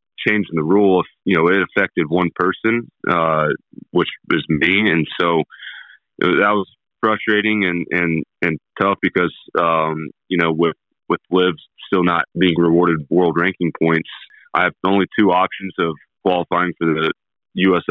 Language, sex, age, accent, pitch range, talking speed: English, male, 30-49, American, 80-95 Hz, 155 wpm